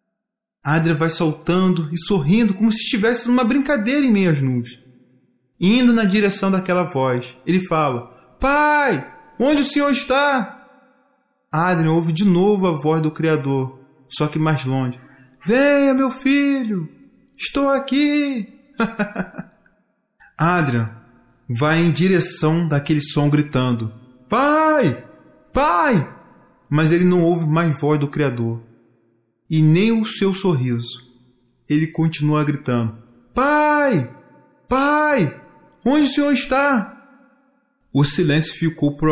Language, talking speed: Portuguese, 120 wpm